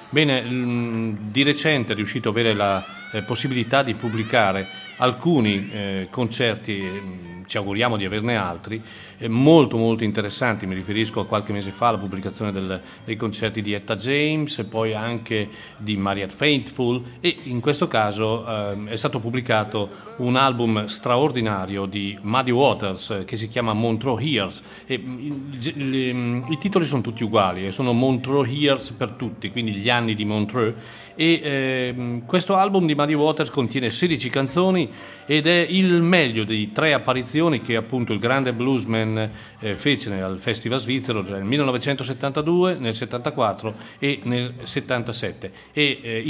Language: Italian